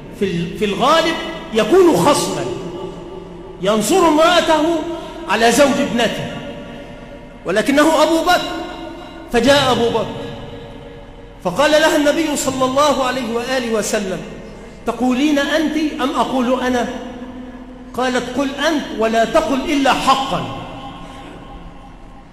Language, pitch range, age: French, 230-330 Hz, 50-69